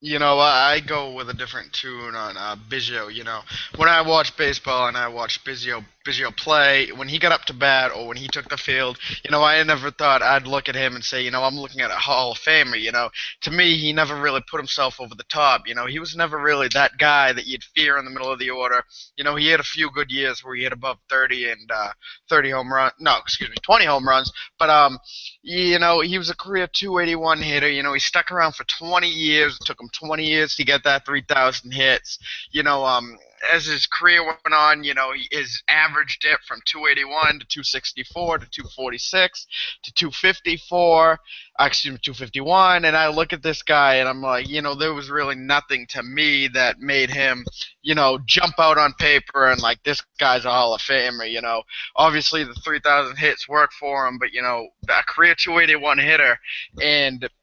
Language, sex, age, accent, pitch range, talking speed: English, male, 20-39, American, 130-155 Hz, 220 wpm